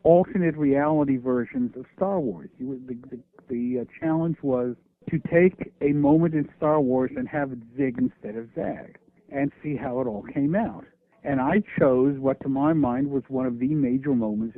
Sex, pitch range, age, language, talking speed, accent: male, 130-155 Hz, 60-79, English, 185 wpm, American